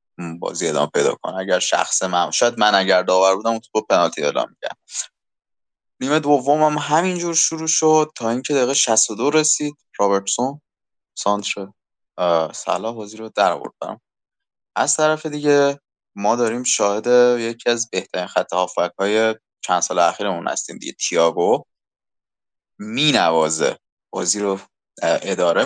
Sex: male